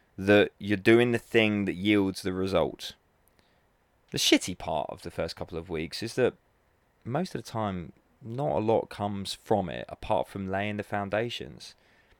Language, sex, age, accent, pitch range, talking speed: English, male, 20-39, British, 90-115 Hz, 170 wpm